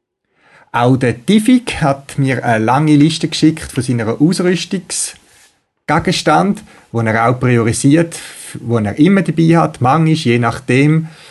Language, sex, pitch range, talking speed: German, male, 120-160 Hz, 120 wpm